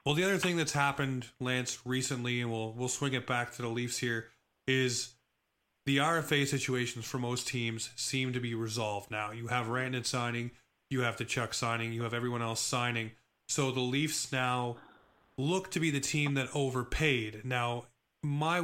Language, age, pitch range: English, 30-49, 120-140 Hz